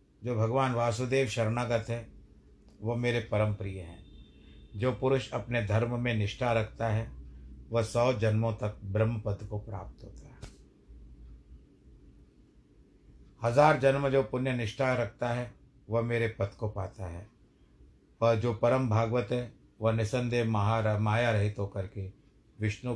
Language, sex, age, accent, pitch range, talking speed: Hindi, male, 50-69, native, 105-130 Hz, 145 wpm